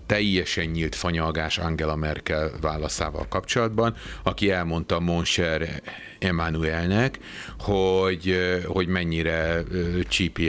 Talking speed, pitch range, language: 85 wpm, 80-95 Hz, Hungarian